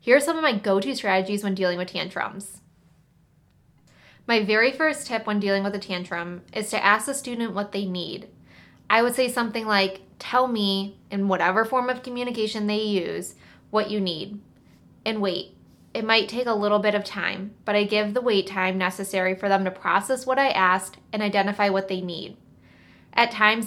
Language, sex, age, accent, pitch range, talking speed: English, female, 20-39, American, 190-225 Hz, 195 wpm